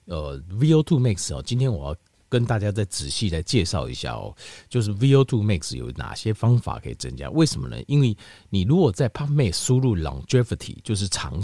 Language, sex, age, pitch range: Chinese, male, 50-69, 85-135 Hz